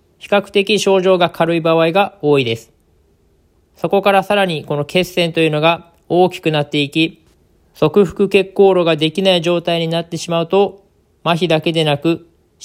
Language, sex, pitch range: Japanese, male, 155-175 Hz